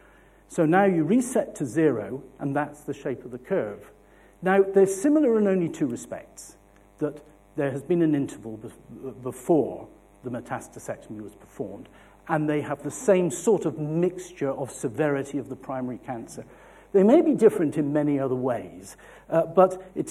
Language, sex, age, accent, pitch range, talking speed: English, male, 60-79, British, 125-175 Hz, 165 wpm